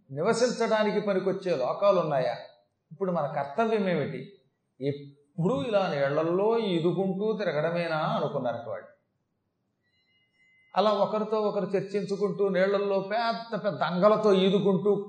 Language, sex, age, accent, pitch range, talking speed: Telugu, male, 30-49, native, 140-195 Hz, 85 wpm